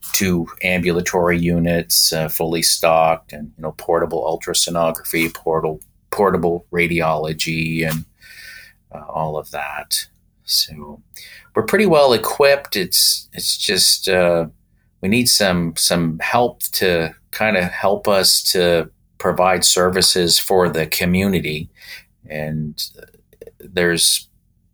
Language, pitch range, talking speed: English, 80-90 Hz, 115 wpm